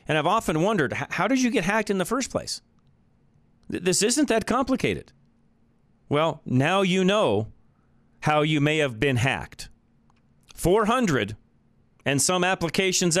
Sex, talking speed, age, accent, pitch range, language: male, 140 wpm, 40-59, American, 120-175 Hz, English